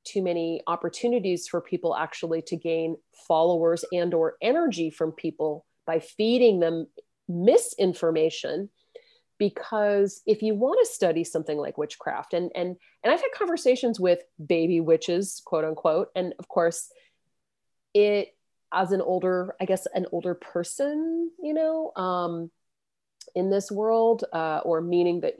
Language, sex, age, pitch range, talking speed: English, female, 30-49, 170-215 Hz, 140 wpm